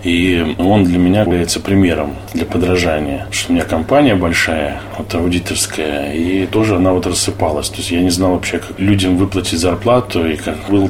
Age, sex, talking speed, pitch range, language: 20-39, male, 185 wpm, 85-100 Hz, Russian